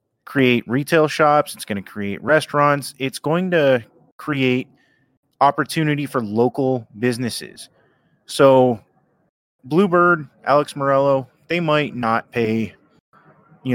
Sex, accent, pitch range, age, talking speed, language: male, American, 110-145 Hz, 30-49, 110 wpm, English